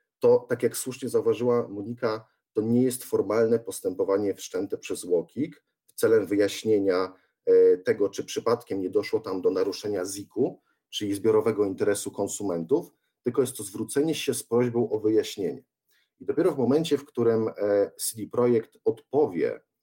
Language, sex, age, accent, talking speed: Polish, male, 40-59, native, 145 wpm